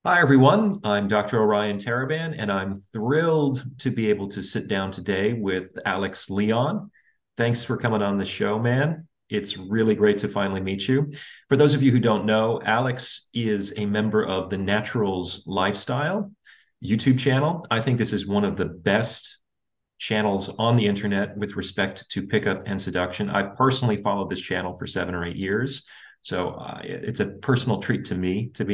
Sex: male